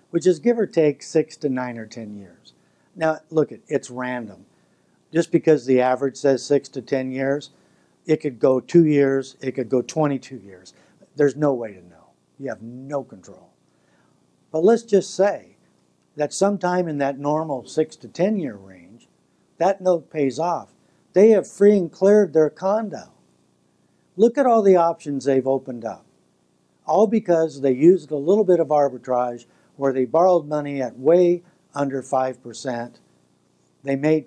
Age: 60-79